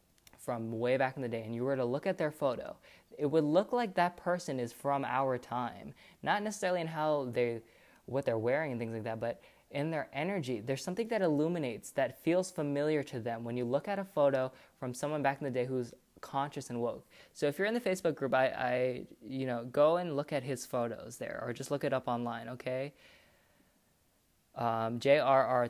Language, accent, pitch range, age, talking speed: English, American, 125-150 Hz, 20-39, 215 wpm